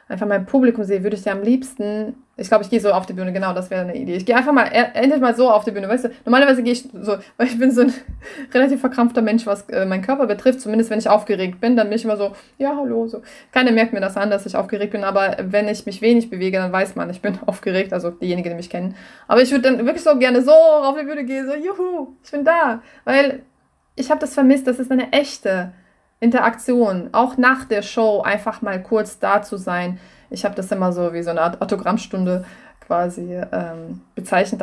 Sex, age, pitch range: female, 20-39, 195-250 Hz